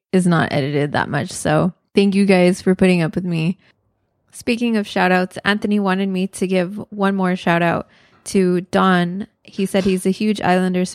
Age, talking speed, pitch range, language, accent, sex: 20-39, 190 wpm, 170-190 Hz, English, American, female